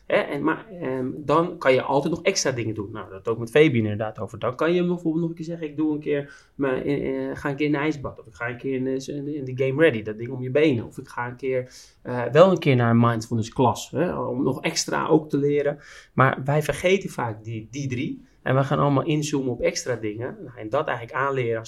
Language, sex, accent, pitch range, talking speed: Dutch, male, Dutch, 120-150 Hz, 265 wpm